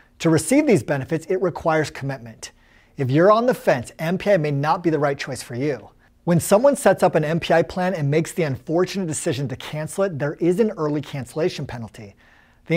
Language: English